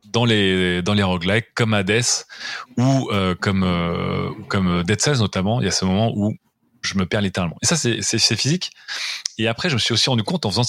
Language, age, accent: French, 30-49, French